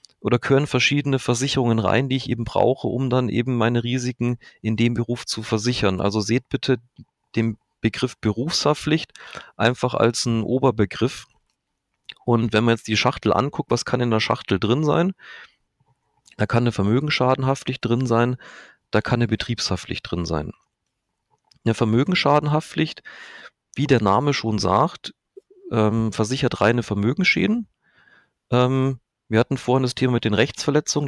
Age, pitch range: 40-59, 110-130 Hz